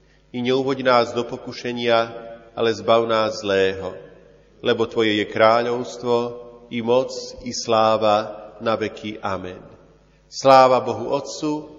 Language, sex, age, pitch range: Slovak, male, 40-59, 115-135 Hz